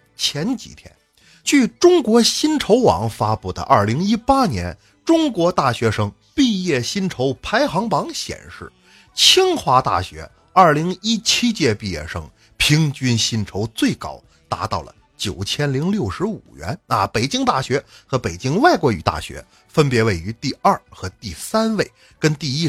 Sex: male